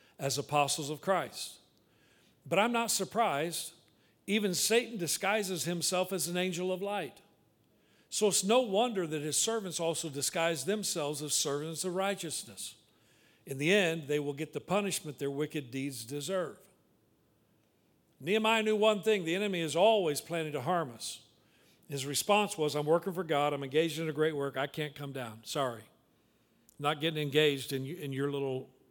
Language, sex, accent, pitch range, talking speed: English, male, American, 140-170 Hz, 165 wpm